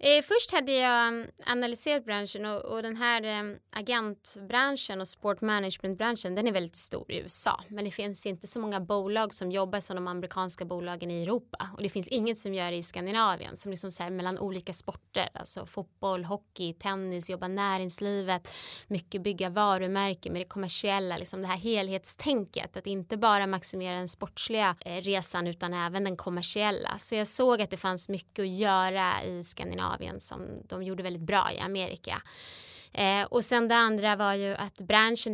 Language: Swedish